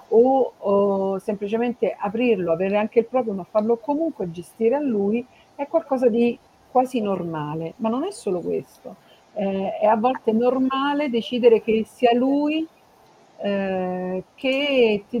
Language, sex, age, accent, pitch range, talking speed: Italian, female, 50-69, native, 180-240 Hz, 140 wpm